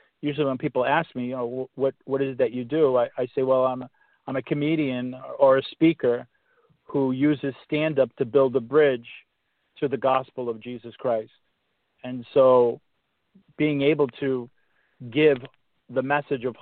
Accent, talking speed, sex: American, 175 wpm, male